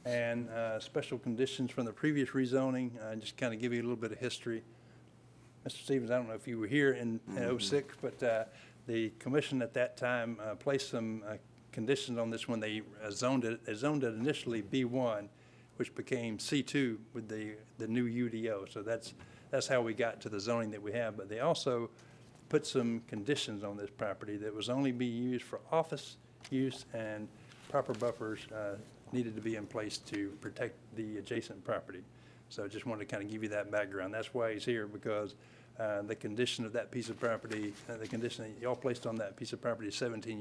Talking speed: 210 wpm